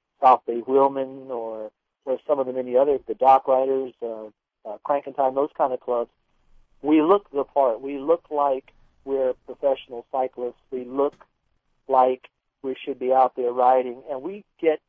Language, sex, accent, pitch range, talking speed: English, male, American, 125-140 Hz, 175 wpm